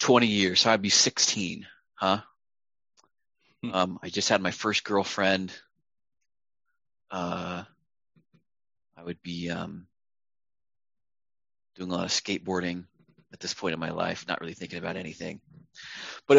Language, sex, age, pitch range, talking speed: English, male, 20-39, 95-115 Hz, 130 wpm